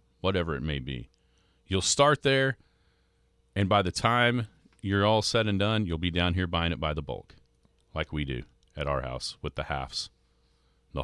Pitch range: 70-100 Hz